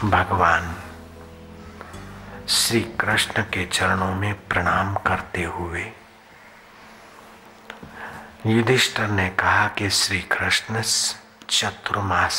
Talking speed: 75 wpm